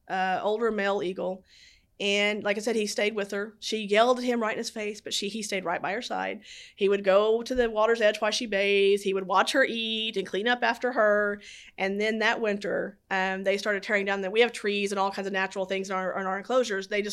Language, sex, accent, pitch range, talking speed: English, female, American, 190-215 Hz, 260 wpm